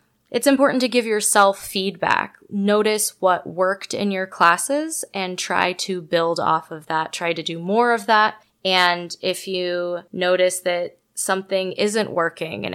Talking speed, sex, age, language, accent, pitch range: 160 wpm, female, 20-39, English, American, 170-200 Hz